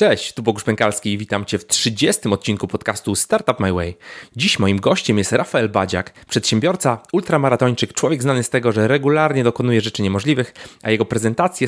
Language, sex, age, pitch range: Polish, male, 30-49, 110-145 Hz